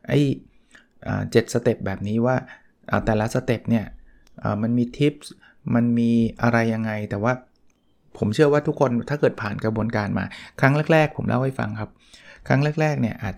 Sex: male